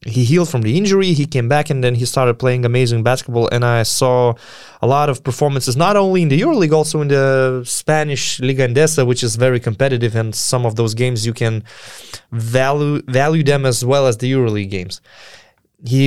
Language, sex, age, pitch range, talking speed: English, male, 20-39, 120-150 Hz, 200 wpm